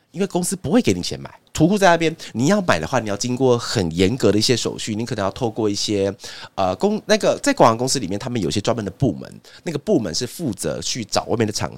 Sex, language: male, Chinese